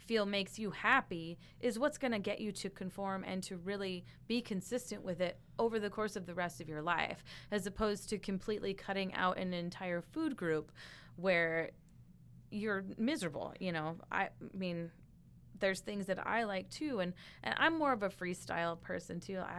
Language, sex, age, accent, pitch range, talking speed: English, female, 20-39, American, 175-215 Hz, 185 wpm